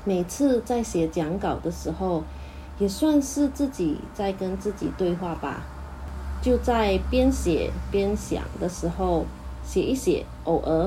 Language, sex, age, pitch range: Chinese, female, 30-49, 170-235 Hz